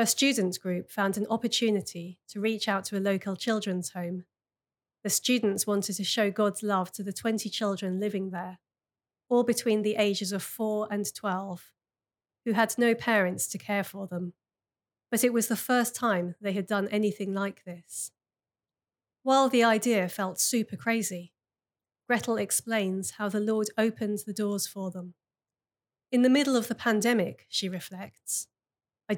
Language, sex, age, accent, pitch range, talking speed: English, female, 30-49, British, 195-230 Hz, 165 wpm